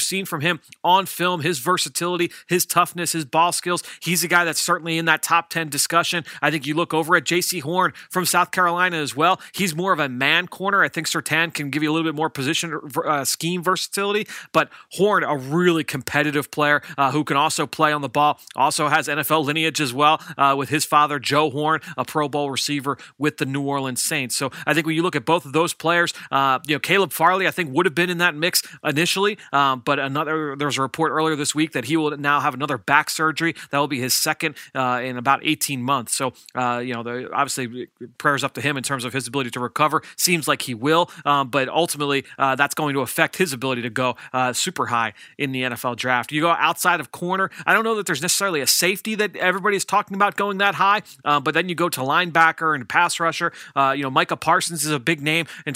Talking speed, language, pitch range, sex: 240 wpm, English, 140-175 Hz, male